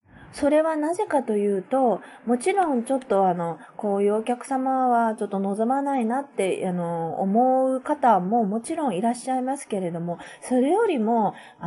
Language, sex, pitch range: Japanese, female, 170-245 Hz